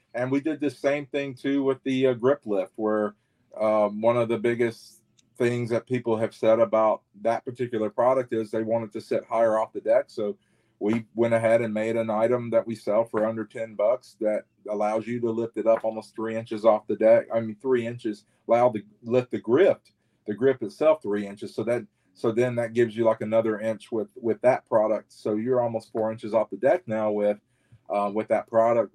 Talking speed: 220 wpm